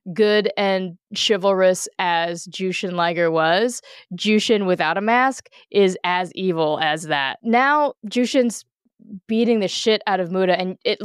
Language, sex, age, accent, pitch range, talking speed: English, female, 20-39, American, 180-235 Hz, 140 wpm